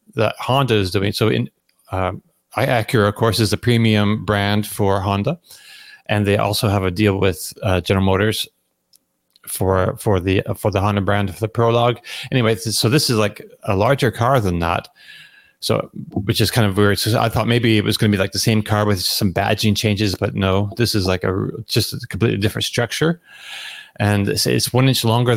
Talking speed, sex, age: 210 wpm, male, 30-49